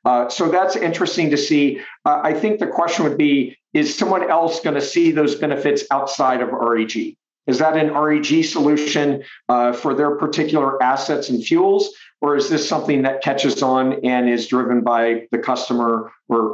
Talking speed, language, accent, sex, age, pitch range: 180 wpm, English, American, male, 50-69, 130-165 Hz